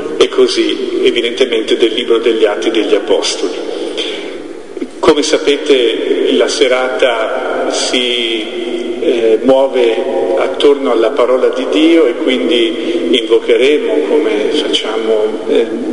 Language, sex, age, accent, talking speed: Italian, male, 50-69, native, 100 wpm